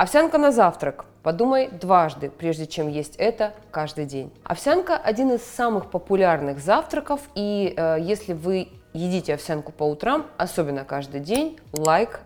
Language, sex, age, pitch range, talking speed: Russian, female, 20-39, 160-225 Hz, 140 wpm